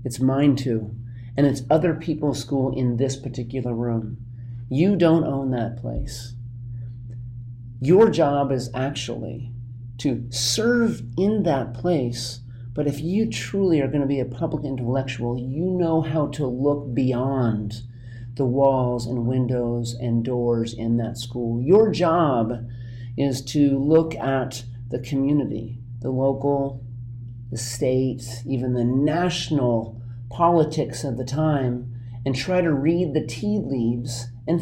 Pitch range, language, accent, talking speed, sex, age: 120-150 Hz, English, American, 135 wpm, male, 40-59